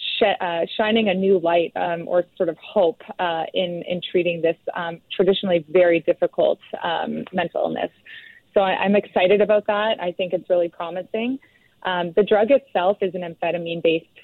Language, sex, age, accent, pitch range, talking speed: English, female, 30-49, American, 170-195 Hz, 165 wpm